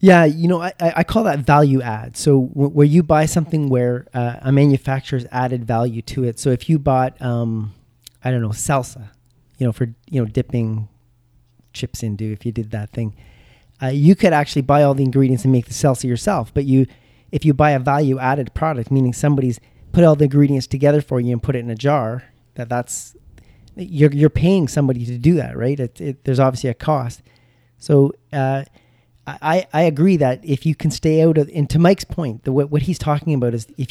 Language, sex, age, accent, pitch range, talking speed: English, male, 30-49, American, 120-150 Hz, 215 wpm